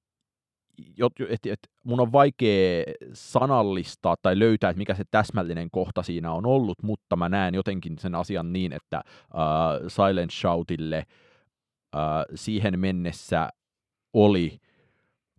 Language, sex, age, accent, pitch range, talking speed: Finnish, male, 30-49, native, 85-100 Hz, 115 wpm